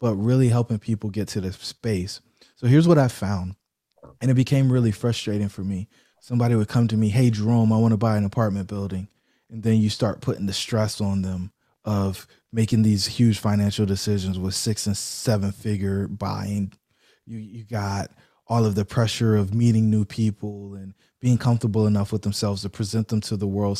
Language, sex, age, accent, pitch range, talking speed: English, male, 20-39, American, 100-115 Hz, 195 wpm